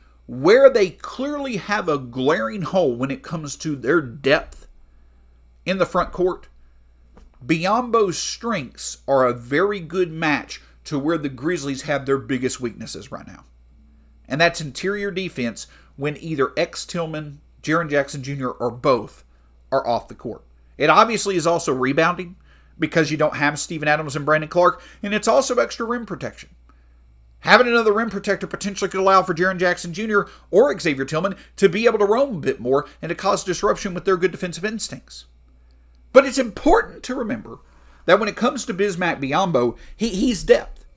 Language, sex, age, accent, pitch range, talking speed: English, male, 50-69, American, 135-200 Hz, 170 wpm